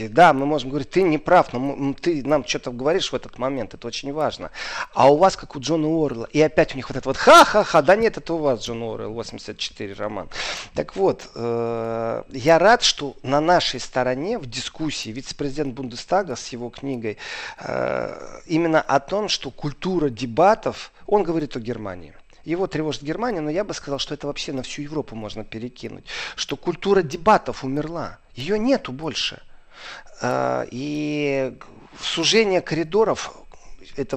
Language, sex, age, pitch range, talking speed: Russian, male, 40-59, 120-155 Hz, 165 wpm